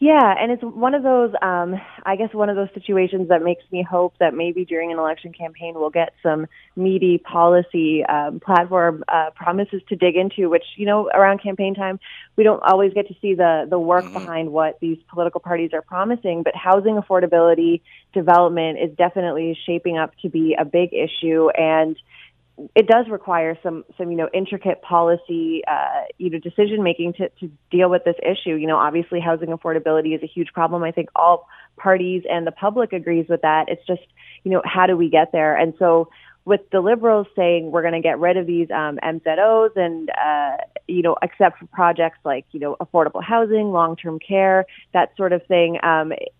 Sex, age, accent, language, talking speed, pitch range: female, 20-39, American, English, 195 wpm, 165-190 Hz